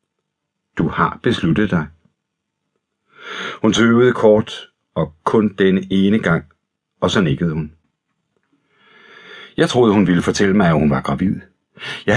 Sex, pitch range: male, 90-115 Hz